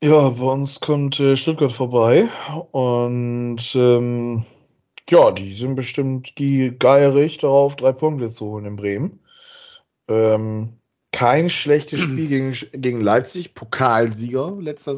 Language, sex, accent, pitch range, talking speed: German, male, German, 105-130 Hz, 125 wpm